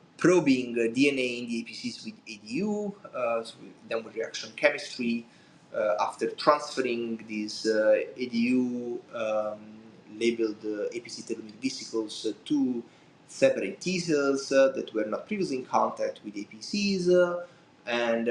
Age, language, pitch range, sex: 20-39, English, 110-150 Hz, male